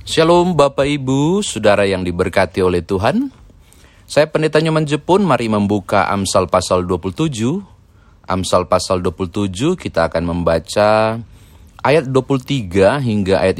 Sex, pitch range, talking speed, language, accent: male, 85-115 Hz, 120 wpm, Indonesian, native